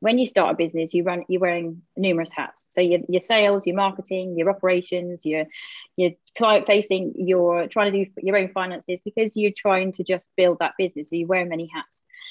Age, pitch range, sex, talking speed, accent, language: 30-49, 175-215 Hz, female, 215 wpm, British, English